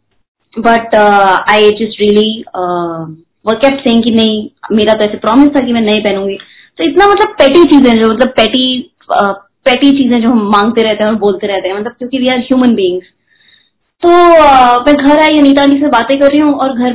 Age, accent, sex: 20-39, native, female